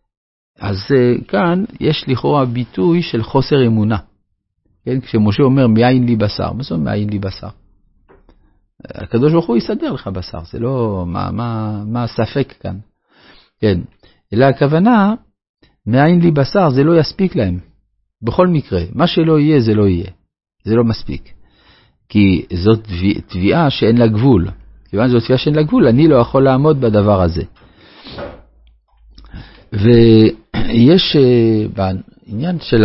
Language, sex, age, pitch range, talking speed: Hebrew, male, 50-69, 100-135 Hz, 145 wpm